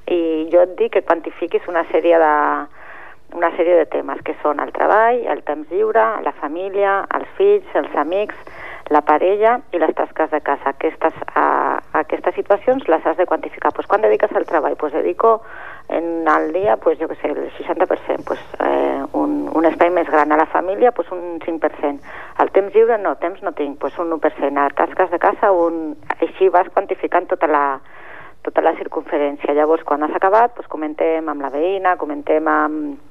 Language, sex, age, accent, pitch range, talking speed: English, female, 40-59, Spanish, 150-185 Hz, 195 wpm